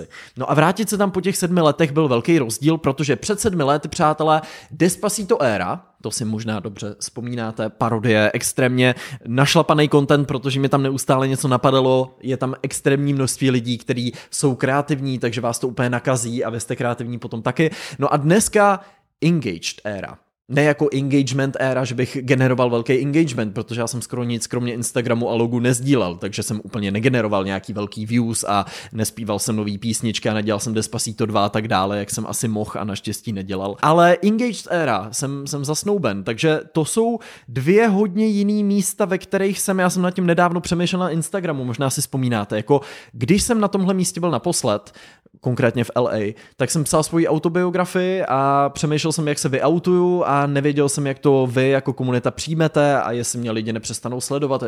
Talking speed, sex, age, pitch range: 185 wpm, male, 20-39, 115-160 Hz